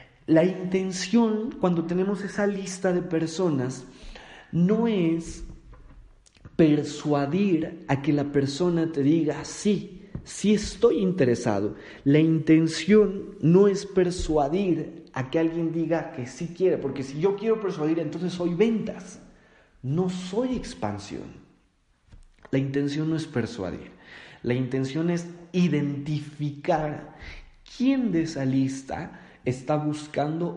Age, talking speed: 40-59, 115 wpm